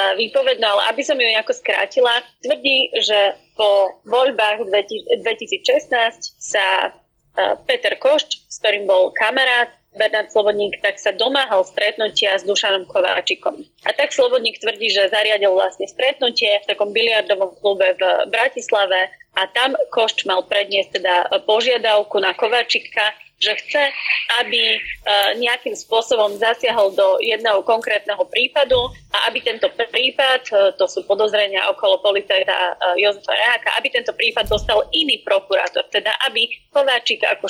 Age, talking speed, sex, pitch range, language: 30-49, 130 wpm, female, 205-270 Hz, Slovak